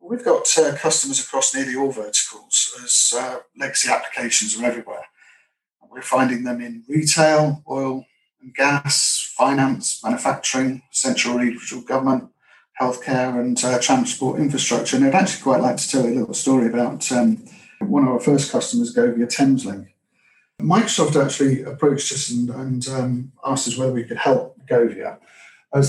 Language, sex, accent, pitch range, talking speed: English, male, British, 120-150 Hz, 155 wpm